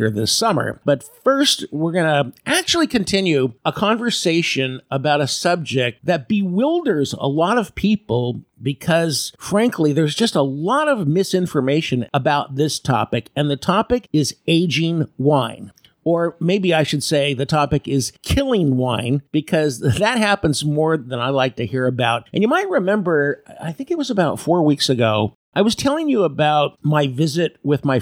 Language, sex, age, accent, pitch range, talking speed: English, male, 50-69, American, 135-185 Hz, 165 wpm